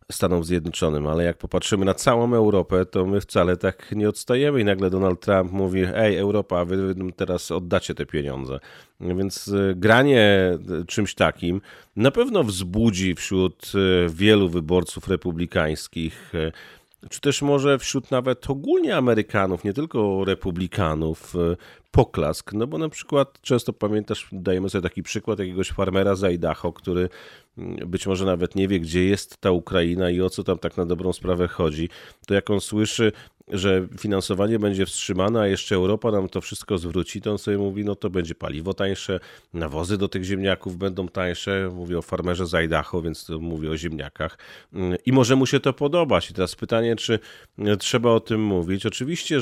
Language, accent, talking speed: Polish, native, 165 wpm